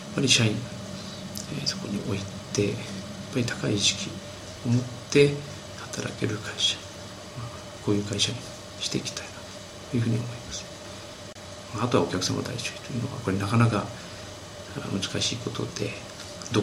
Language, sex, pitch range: Japanese, male, 100-120 Hz